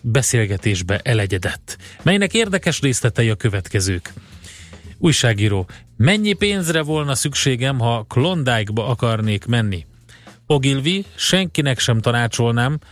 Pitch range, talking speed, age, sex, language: 105-145 Hz, 95 wpm, 30-49, male, Hungarian